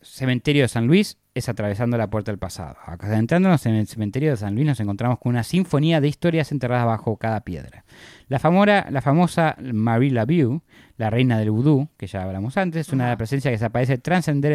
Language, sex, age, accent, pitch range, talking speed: Spanish, male, 20-39, Argentinian, 115-155 Hz, 195 wpm